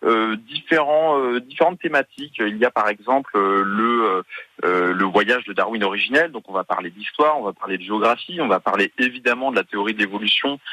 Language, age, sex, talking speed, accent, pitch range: French, 30-49, male, 215 wpm, French, 110-185 Hz